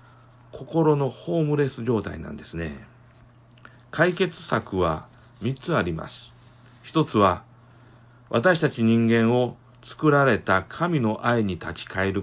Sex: male